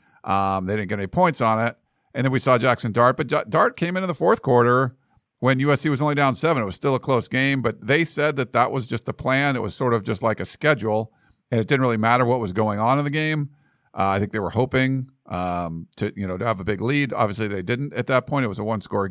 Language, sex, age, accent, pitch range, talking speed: English, male, 50-69, American, 110-135 Hz, 280 wpm